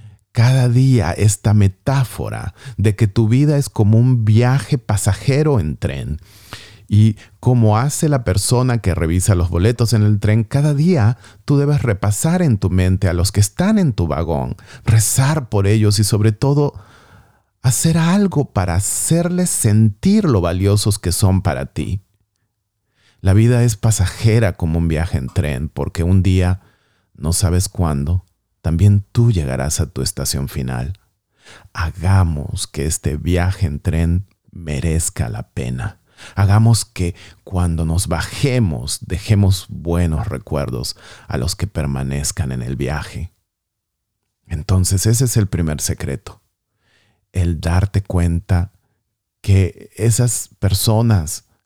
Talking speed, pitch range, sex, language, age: 135 wpm, 90-115 Hz, male, Spanish, 40-59